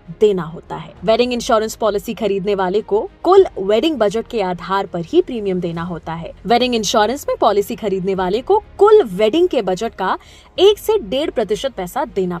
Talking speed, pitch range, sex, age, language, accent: 130 wpm, 195-305 Hz, female, 20-39, Hindi, native